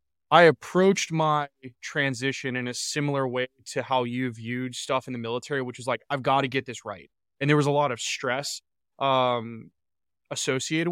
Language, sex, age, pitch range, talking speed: English, male, 20-39, 125-150 Hz, 185 wpm